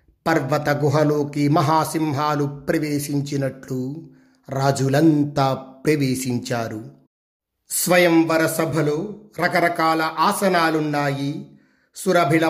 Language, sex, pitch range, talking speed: Telugu, male, 145-165 Hz, 55 wpm